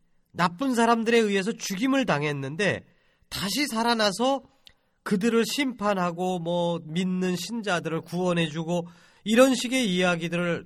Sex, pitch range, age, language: male, 160-240 Hz, 40-59, Korean